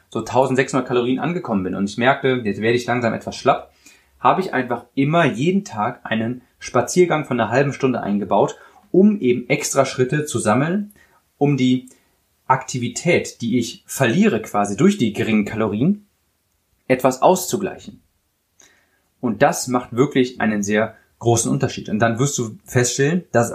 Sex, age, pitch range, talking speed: male, 30-49, 115-150 Hz, 155 wpm